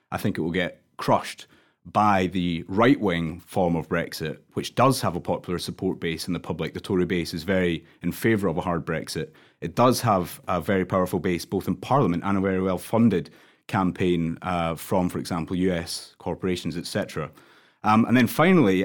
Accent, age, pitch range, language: British, 30-49, 90-110 Hz, English